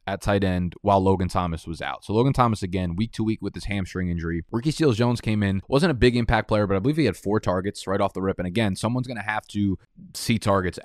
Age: 20-39